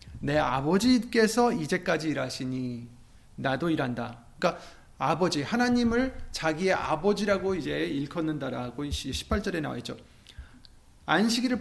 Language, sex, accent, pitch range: Korean, male, native, 125-180 Hz